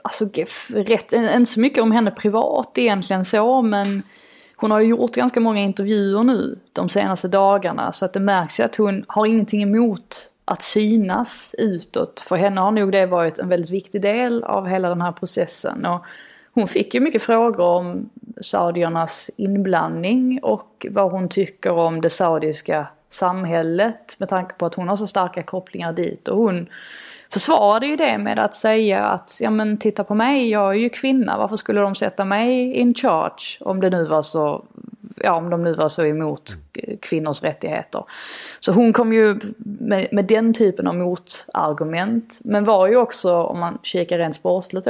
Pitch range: 175-225 Hz